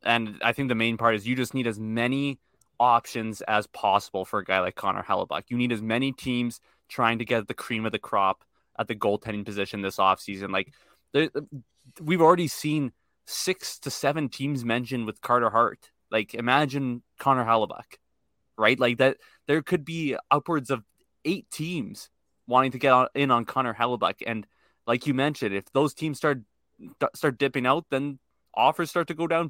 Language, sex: English, male